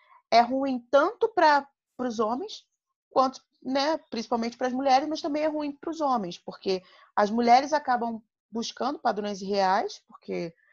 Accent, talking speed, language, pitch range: Brazilian, 150 wpm, Portuguese, 190-250 Hz